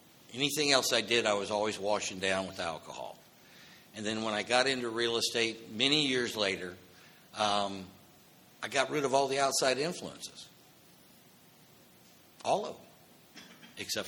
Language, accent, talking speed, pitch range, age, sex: English, American, 150 wpm, 95-120 Hz, 60-79, male